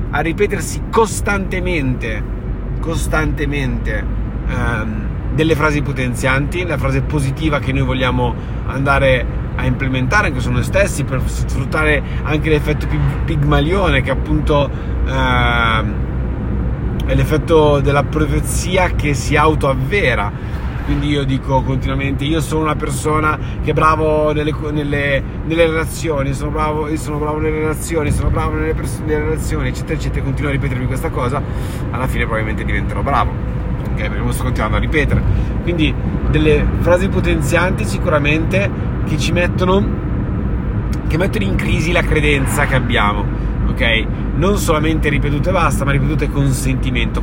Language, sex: Italian, male